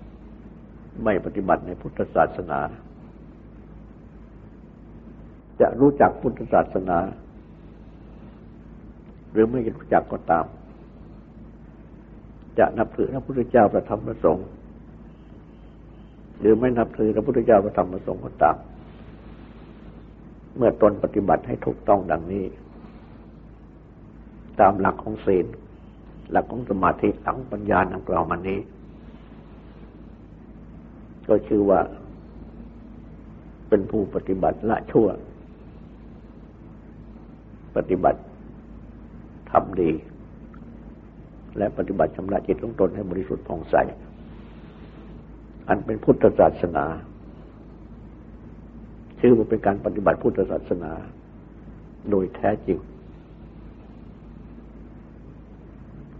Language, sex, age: Thai, male, 60-79